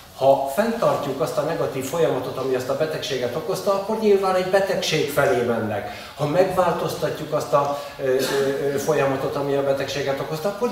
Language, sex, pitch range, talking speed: Hungarian, male, 120-150 Hz, 160 wpm